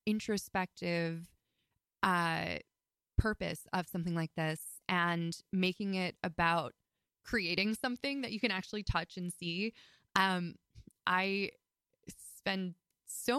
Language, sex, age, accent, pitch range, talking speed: English, female, 20-39, American, 170-210 Hz, 110 wpm